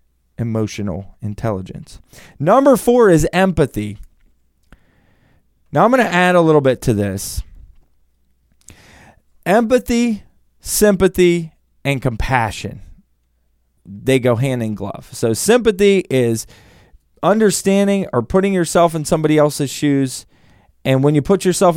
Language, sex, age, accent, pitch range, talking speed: English, male, 20-39, American, 110-175 Hz, 115 wpm